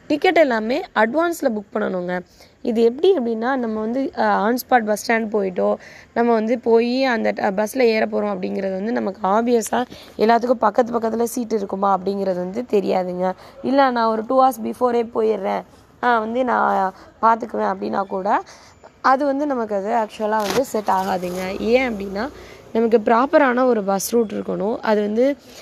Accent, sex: native, female